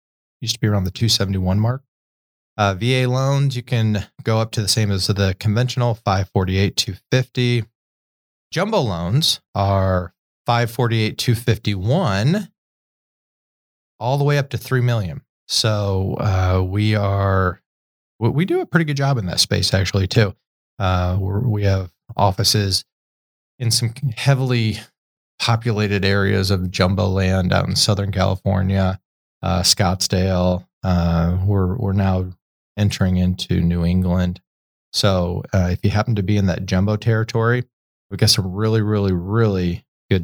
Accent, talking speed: American, 155 wpm